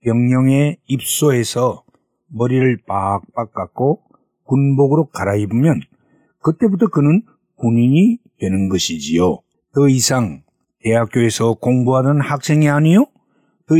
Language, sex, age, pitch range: Korean, male, 60-79, 125-185 Hz